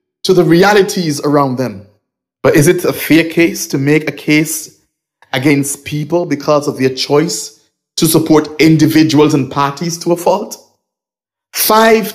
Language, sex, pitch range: English, male, 155-240 Hz